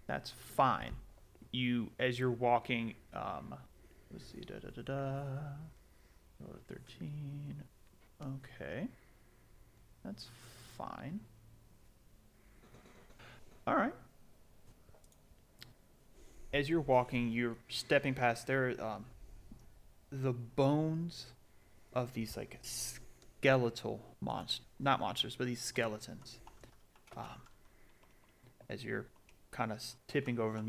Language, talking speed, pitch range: English, 90 wpm, 105-130 Hz